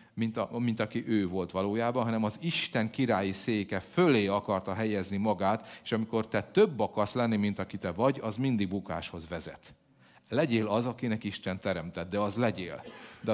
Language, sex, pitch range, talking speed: Hungarian, male, 105-140 Hz, 175 wpm